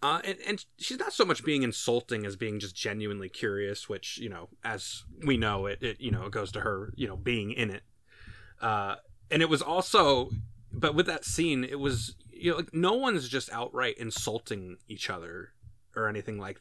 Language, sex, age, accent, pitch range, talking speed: English, male, 20-39, American, 105-135 Hz, 205 wpm